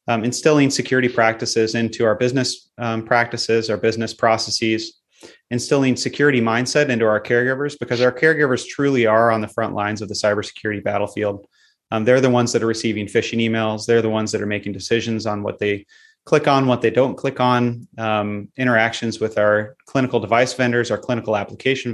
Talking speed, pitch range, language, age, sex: 185 wpm, 110-125 Hz, English, 30-49, male